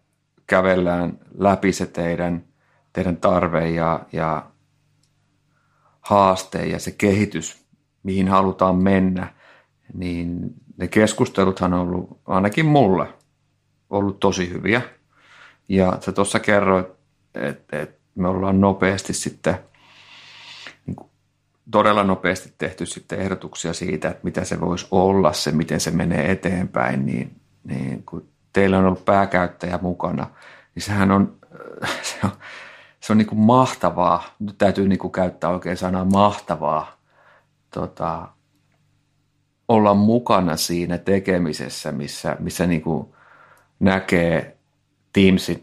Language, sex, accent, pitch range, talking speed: Finnish, male, native, 90-100 Hz, 105 wpm